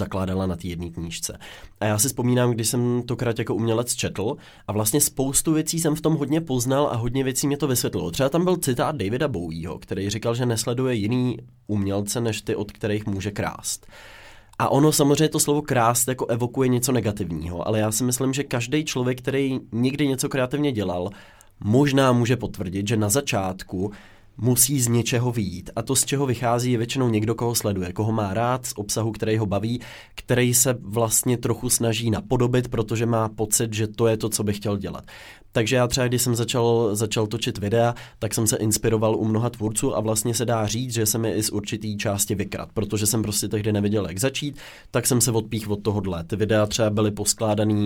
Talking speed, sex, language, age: 205 wpm, male, Czech, 20-39